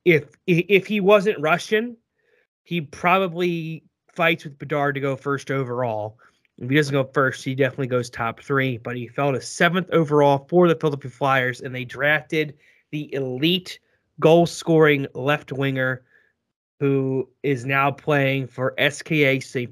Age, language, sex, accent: 30-49, English, male, American